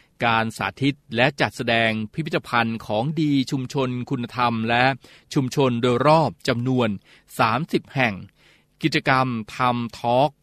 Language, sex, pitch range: Thai, male, 115-140 Hz